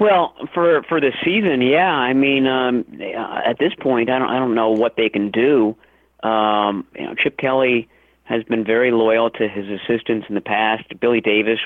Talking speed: 195 wpm